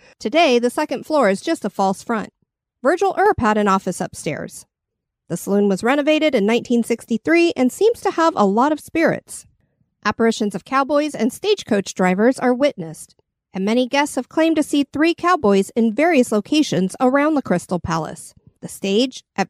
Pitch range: 200-300 Hz